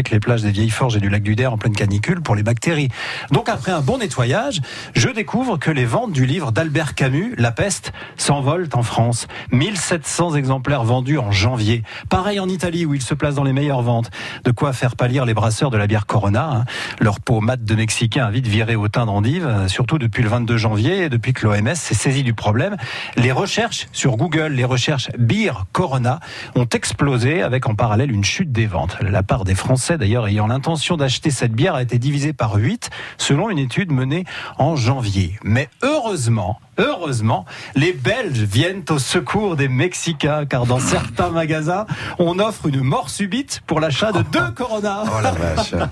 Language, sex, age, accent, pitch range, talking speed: French, male, 40-59, French, 115-155 Hz, 190 wpm